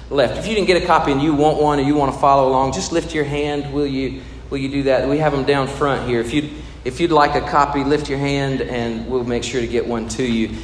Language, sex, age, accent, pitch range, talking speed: English, male, 40-59, American, 125-155 Hz, 295 wpm